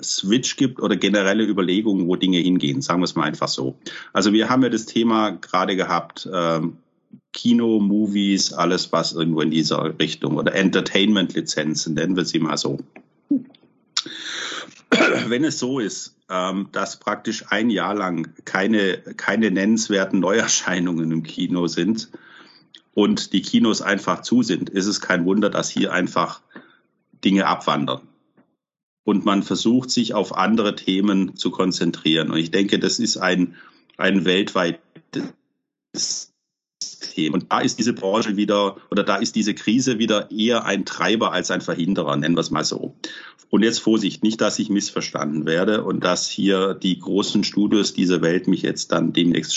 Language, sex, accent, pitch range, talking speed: German, male, German, 85-110 Hz, 160 wpm